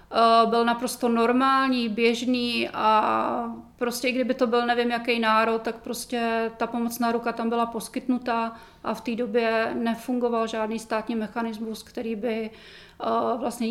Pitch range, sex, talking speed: 225-240 Hz, female, 140 wpm